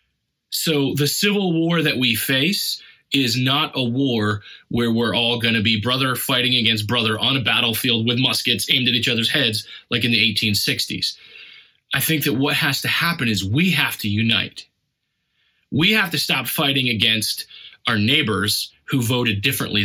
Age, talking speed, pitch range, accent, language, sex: 30-49, 175 wpm, 115-165 Hz, American, English, male